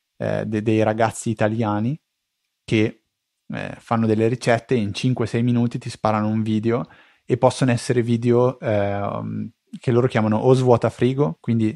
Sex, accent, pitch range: male, native, 110-130 Hz